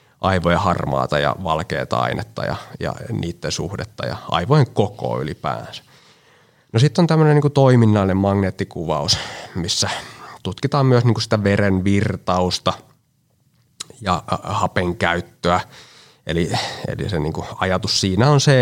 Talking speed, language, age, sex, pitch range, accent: 120 wpm, Finnish, 20-39, male, 90-120 Hz, native